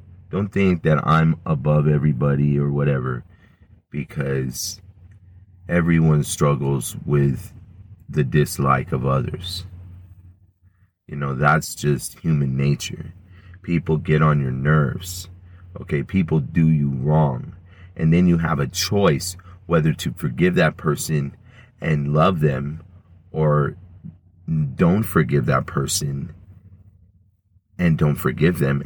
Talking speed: 115 wpm